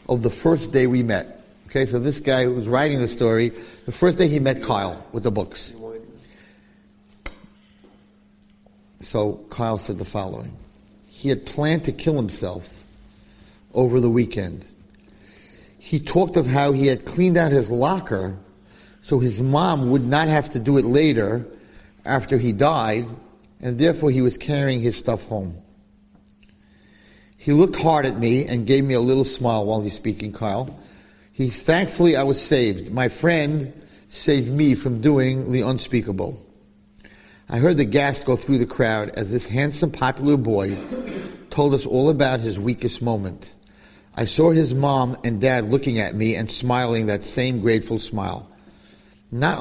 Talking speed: 160 wpm